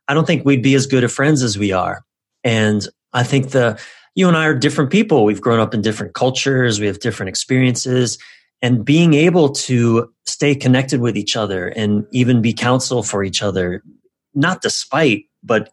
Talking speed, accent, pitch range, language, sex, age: 195 wpm, American, 105-130 Hz, English, male, 30-49